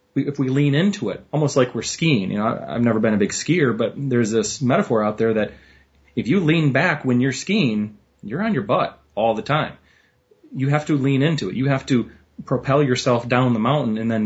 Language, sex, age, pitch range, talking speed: English, male, 30-49, 110-140 Hz, 225 wpm